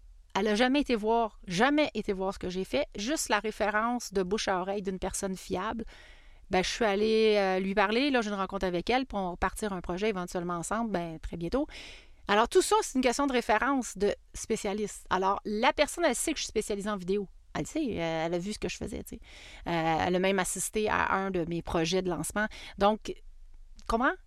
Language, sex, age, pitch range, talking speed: French, female, 30-49, 175-220 Hz, 220 wpm